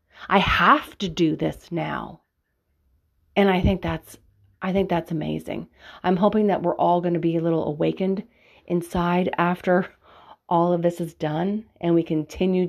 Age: 30-49